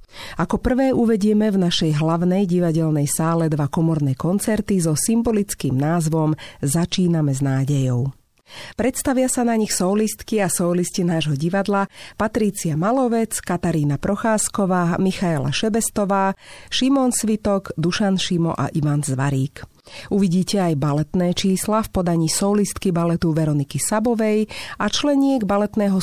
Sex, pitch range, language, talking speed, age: female, 155-205 Hz, Slovak, 120 wpm, 40-59